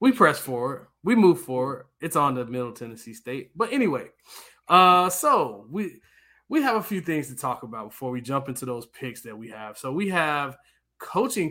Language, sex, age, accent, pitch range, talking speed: English, male, 20-39, American, 125-180 Hz, 200 wpm